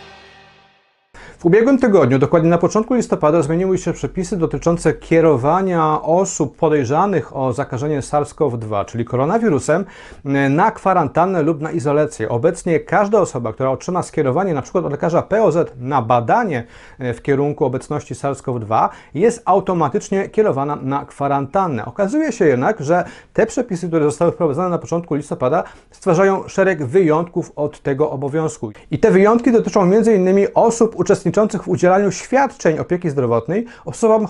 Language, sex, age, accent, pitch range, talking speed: Polish, male, 40-59, native, 140-195 Hz, 130 wpm